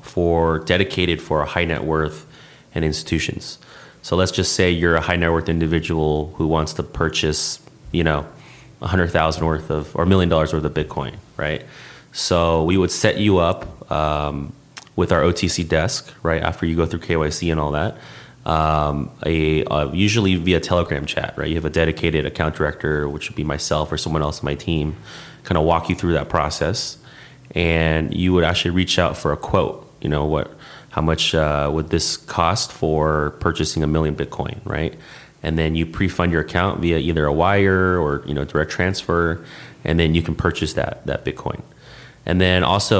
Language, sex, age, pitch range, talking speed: Spanish, male, 30-49, 75-85 Hz, 195 wpm